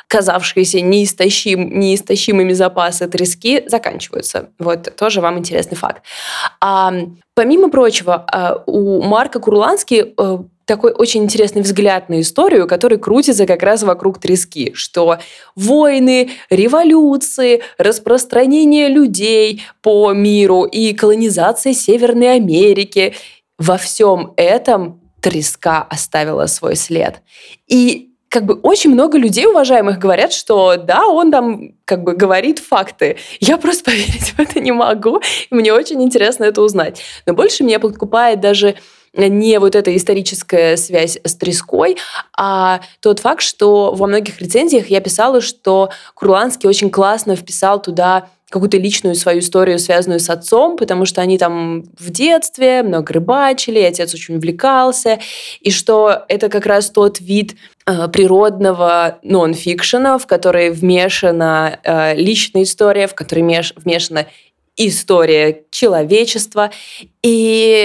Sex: female